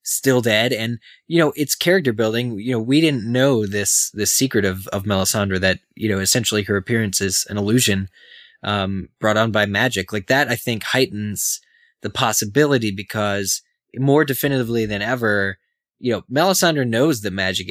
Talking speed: 175 wpm